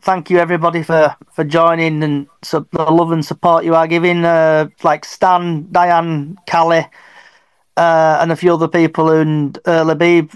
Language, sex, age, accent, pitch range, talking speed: English, male, 30-49, British, 160-185 Hz, 170 wpm